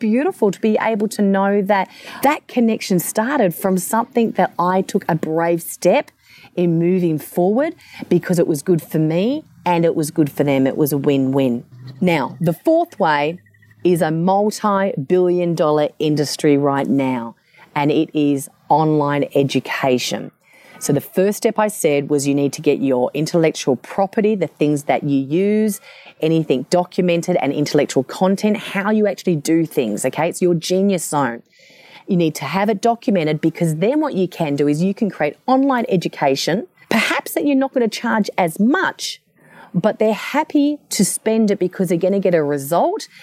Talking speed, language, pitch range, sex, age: 175 wpm, English, 150-205 Hz, female, 30-49